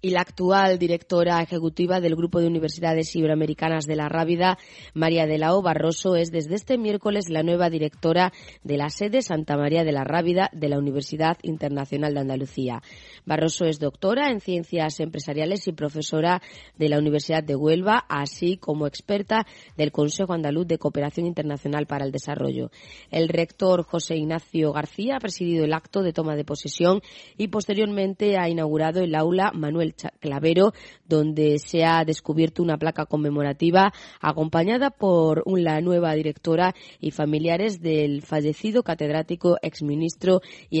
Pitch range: 150-180 Hz